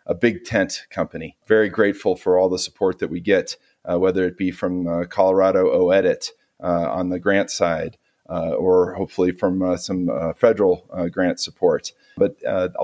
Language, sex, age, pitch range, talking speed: English, male, 30-49, 90-115 Hz, 180 wpm